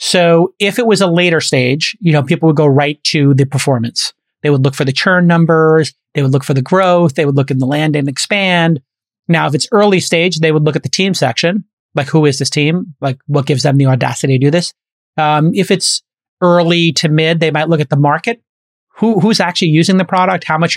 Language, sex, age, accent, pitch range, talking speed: English, male, 30-49, American, 140-175 Hz, 240 wpm